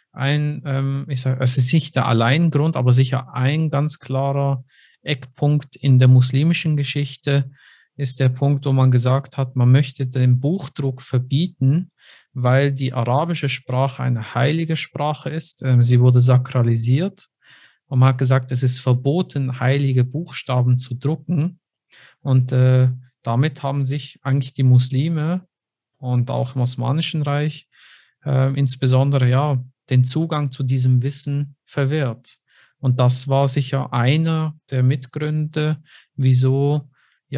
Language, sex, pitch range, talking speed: German, male, 125-140 Hz, 130 wpm